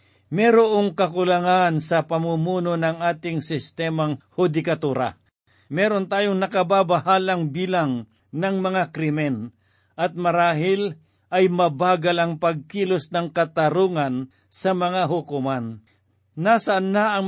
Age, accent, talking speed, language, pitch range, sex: 50-69, native, 100 wpm, Filipino, 145-185 Hz, male